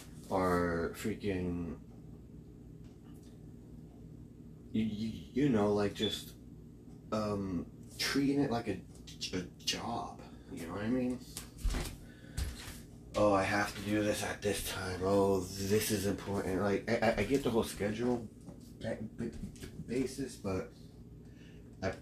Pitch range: 90-105 Hz